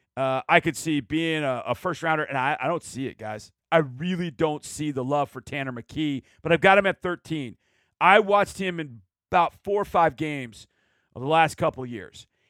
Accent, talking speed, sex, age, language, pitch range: American, 210 wpm, male, 40-59, English, 150-195 Hz